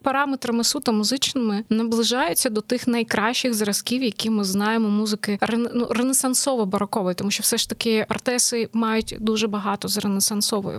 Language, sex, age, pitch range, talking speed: Ukrainian, female, 20-39, 215-265 Hz, 135 wpm